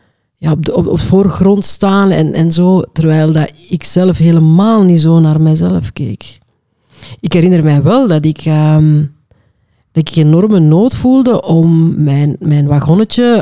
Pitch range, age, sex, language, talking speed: 155-185 Hz, 40-59, female, Dutch, 140 wpm